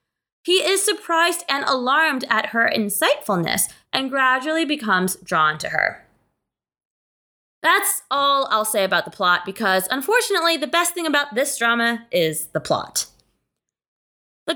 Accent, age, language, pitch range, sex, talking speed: American, 20-39, English, 210-330 Hz, female, 135 wpm